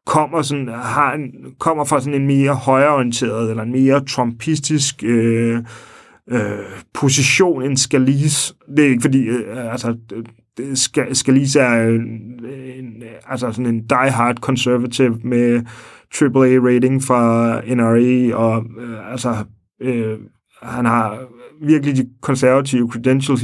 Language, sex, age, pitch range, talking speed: English, male, 30-49, 115-135 Hz, 130 wpm